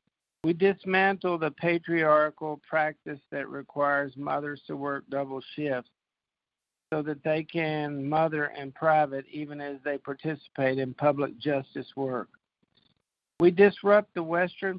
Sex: male